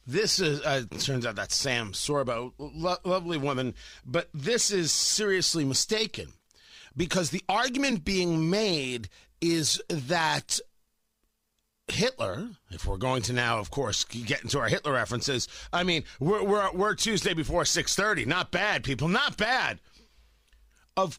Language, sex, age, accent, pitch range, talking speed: English, male, 40-59, American, 125-190 Hz, 145 wpm